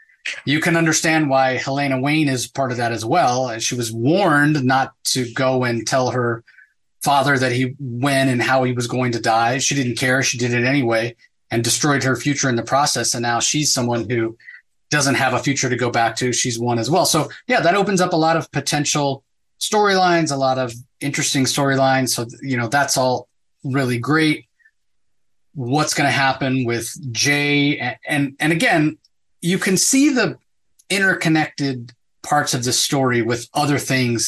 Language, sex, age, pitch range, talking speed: English, male, 30-49, 125-150 Hz, 190 wpm